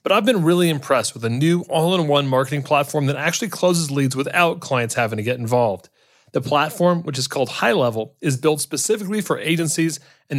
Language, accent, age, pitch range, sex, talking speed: English, American, 30-49, 125-165 Hz, male, 190 wpm